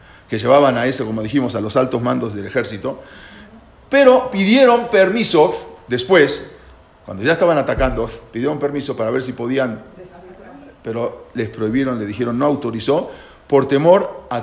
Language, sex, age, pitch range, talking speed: English, male, 40-59, 120-165 Hz, 150 wpm